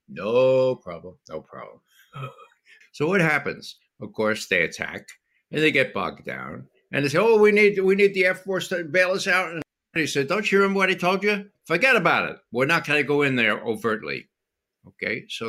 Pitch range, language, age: 120-185 Hz, English, 60-79